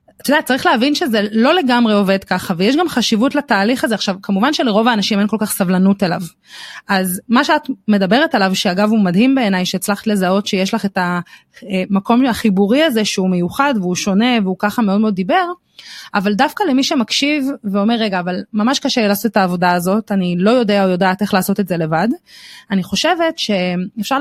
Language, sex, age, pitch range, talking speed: Hebrew, female, 30-49, 195-255 Hz, 190 wpm